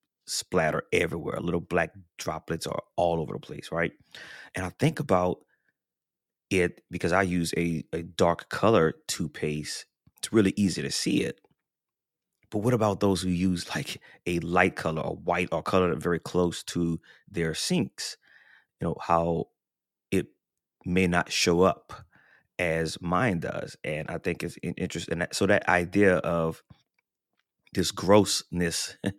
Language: English